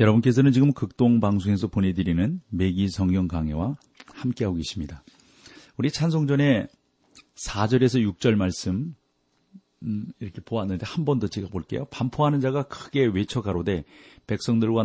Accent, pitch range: native, 100-130 Hz